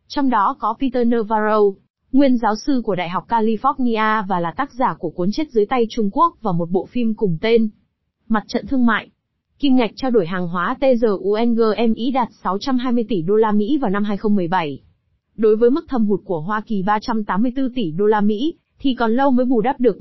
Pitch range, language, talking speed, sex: 200-255 Hz, Vietnamese, 205 wpm, female